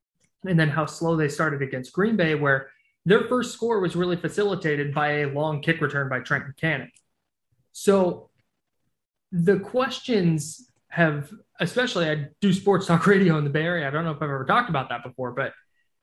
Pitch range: 145-195 Hz